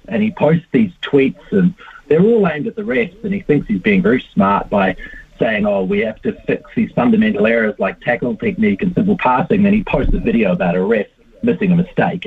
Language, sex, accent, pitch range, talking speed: English, male, Australian, 130-210 Hz, 225 wpm